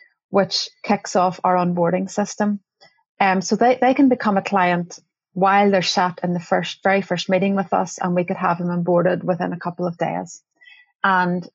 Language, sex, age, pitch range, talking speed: English, female, 30-49, 175-225 Hz, 190 wpm